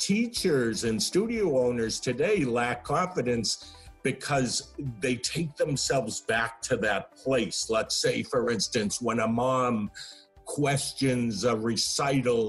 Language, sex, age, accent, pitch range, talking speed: English, male, 50-69, American, 125-150 Hz, 120 wpm